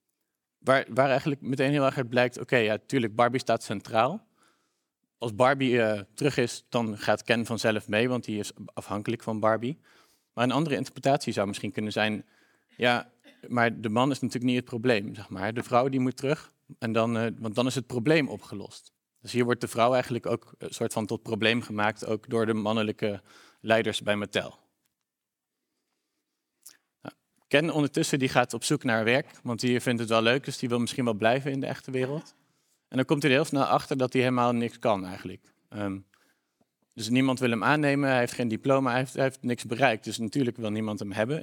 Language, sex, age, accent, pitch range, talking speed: Dutch, male, 40-59, Dutch, 110-130 Hz, 200 wpm